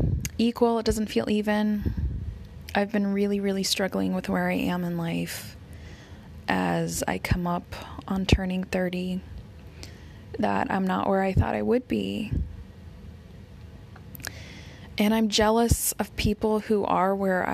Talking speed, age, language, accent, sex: 135 wpm, 20-39, English, American, female